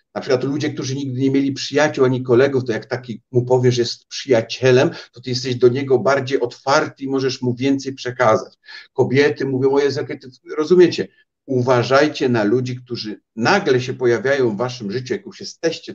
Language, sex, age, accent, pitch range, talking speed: Polish, male, 50-69, native, 120-155 Hz, 180 wpm